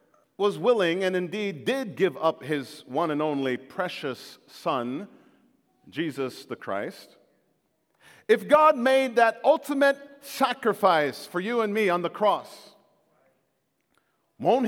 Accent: American